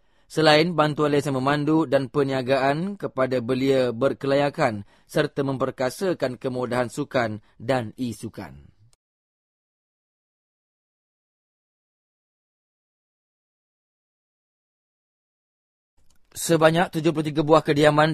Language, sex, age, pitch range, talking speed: English, male, 20-39, 125-145 Hz, 65 wpm